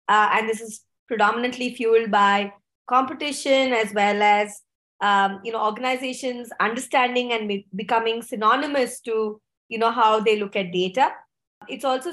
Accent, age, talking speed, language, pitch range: Indian, 20-39, 145 wpm, English, 210-250 Hz